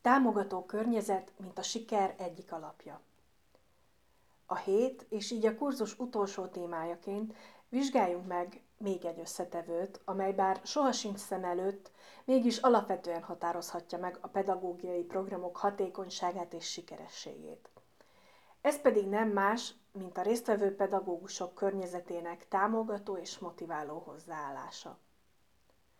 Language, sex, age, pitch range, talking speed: Hungarian, female, 30-49, 180-210 Hz, 110 wpm